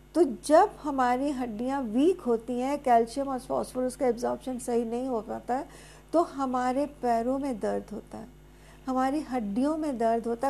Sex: female